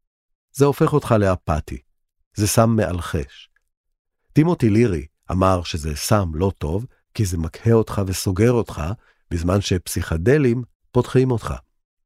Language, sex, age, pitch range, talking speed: Hebrew, male, 50-69, 80-110 Hz, 120 wpm